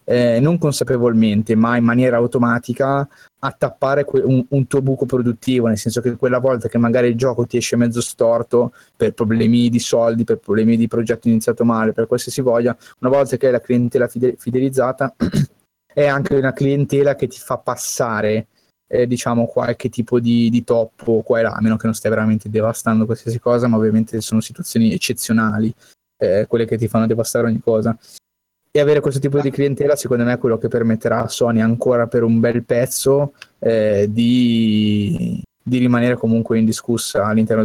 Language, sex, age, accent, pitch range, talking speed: Italian, male, 20-39, native, 115-135 Hz, 180 wpm